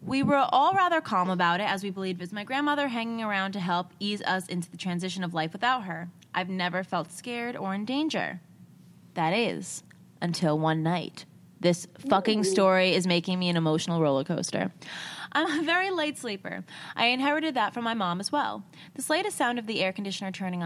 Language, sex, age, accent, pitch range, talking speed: English, female, 20-39, American, 175-240 Hz, 205 wpm